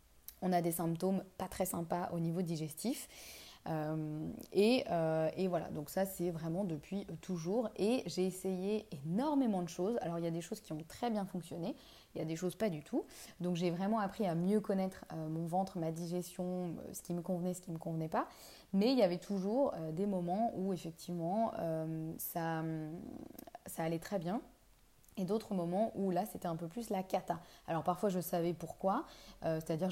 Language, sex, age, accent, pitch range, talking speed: French, female, 20-39, French, 170-210 Hz, 205 wpm